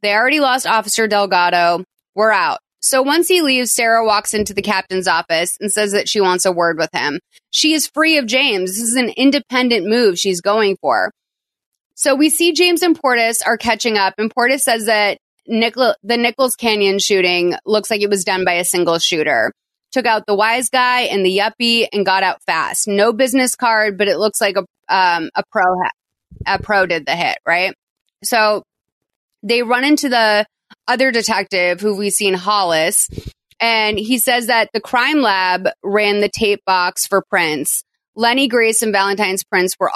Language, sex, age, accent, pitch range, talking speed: English, female, 30-49, American, 190-245 Hz, 185 wpm